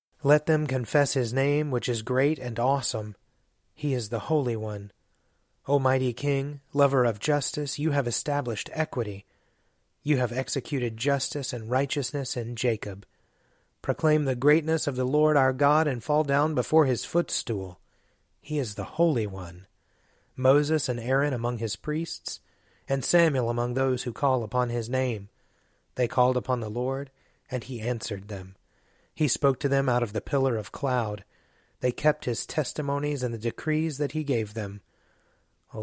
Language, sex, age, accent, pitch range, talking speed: English, male, 30-49, American, 115-145 Hz, 165 wpm